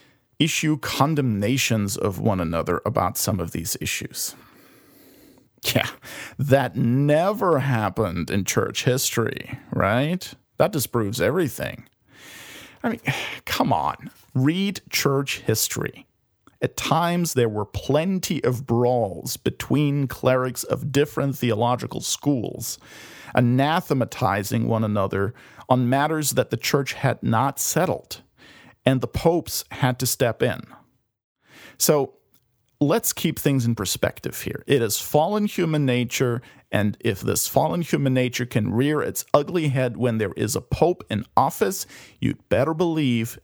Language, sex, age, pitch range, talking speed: English, male, 40-59, 115-145 Hz, 125 wpm